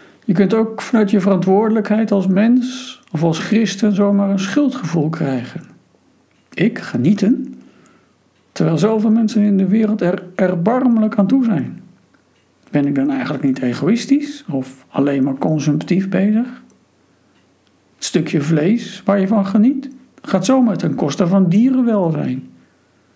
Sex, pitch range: male, 160-220 Hz